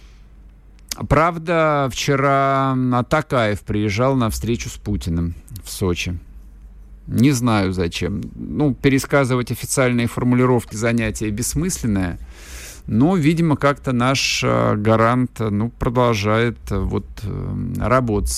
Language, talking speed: Russian, 95 wpm